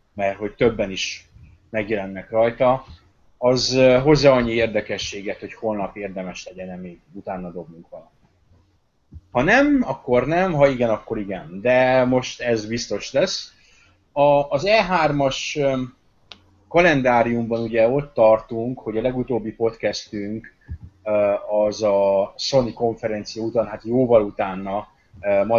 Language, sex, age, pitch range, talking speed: Hungarian, male, 30-49, 100-125 Hz, 115 wpm